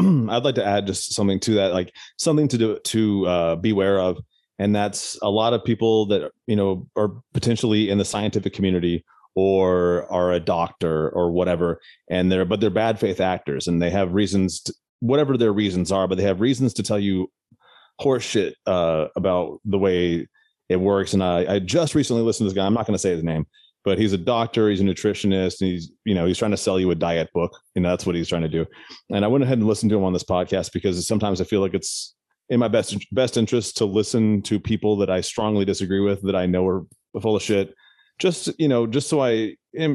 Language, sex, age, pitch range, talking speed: English, male, 30-49, 90-110 Hz, 230 wpm